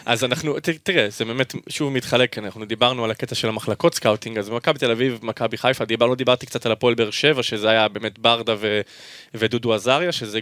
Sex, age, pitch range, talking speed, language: male, 20-39, 115-140 Hz, 205 wpm, Hebrew